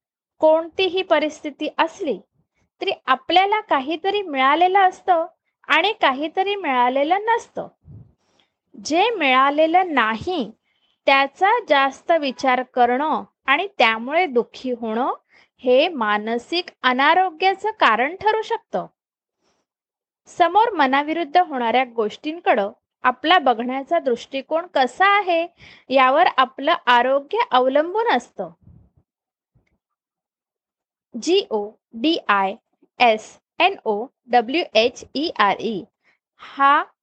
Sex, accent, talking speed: female, native, 90 wpm